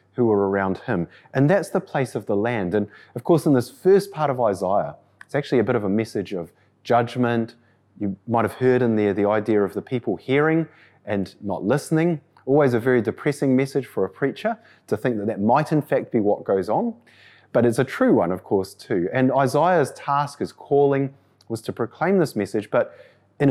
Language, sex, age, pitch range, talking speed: English, male, 30-49, 105-140 Hz, 210 wpm